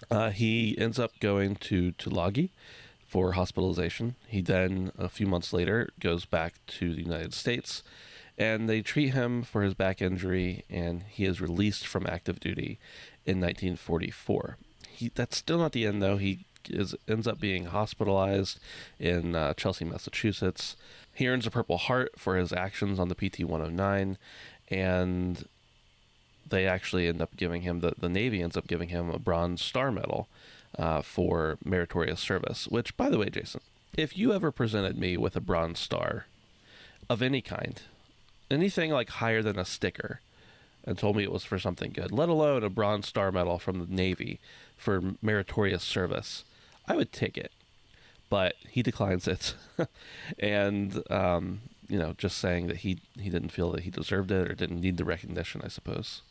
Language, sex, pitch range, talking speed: English, male, 90-110 Hz, 170 wpm